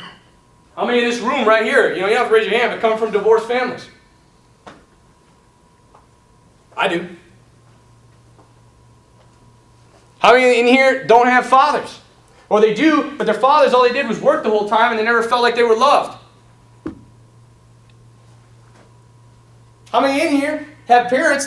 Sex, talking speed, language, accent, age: male, 160 wpm, English, American, 30-49